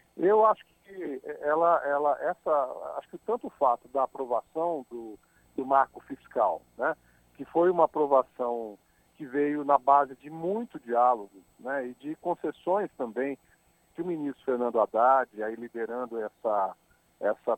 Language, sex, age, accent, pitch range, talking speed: Portuguese, male, 50-69, Brazilian, 120-175 Hz, 145 wpm